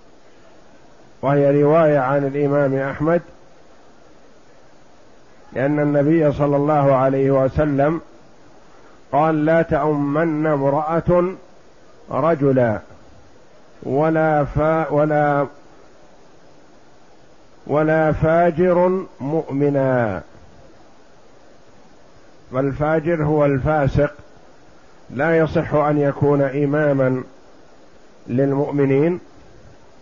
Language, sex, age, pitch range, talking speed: Arabic, male, 50-69, 140-160 Hz, 60 wpm